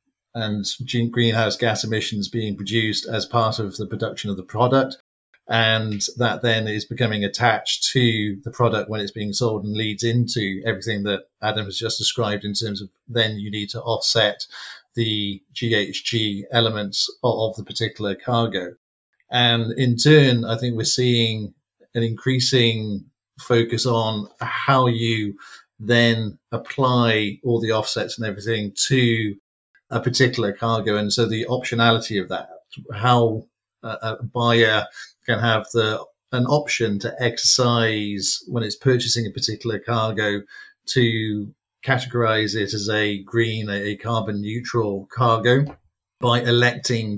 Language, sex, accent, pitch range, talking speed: English, male, British, 105-120 Hz, 140 wpm